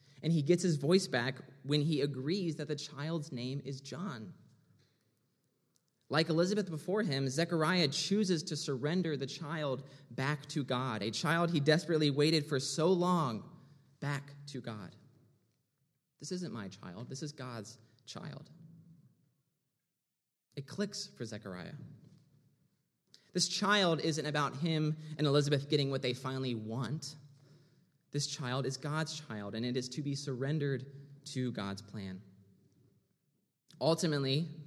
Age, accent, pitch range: 20-39, American, 130-155 Hz